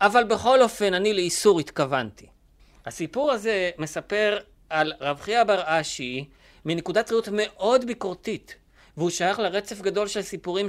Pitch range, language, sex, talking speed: 155-205 Hz, Hebrew, male, 135 wpm